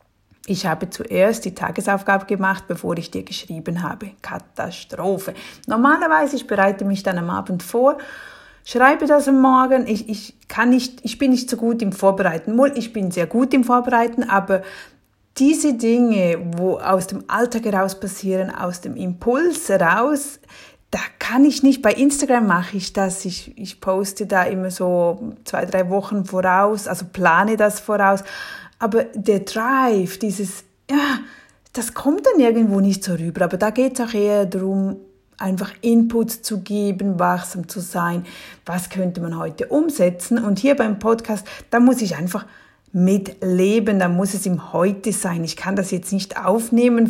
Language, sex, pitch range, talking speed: German, female, 190-235 Hz, 165 wpm